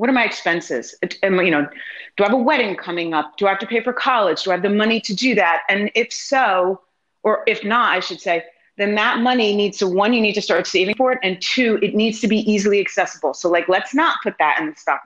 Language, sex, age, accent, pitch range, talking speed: English, female, 30-49, American, 185-230 Hz, 270 wpm